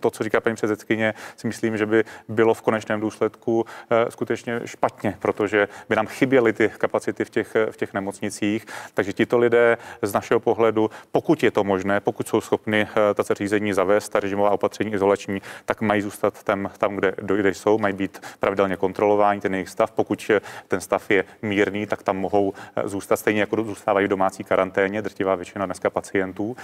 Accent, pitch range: native, 100-110 Hz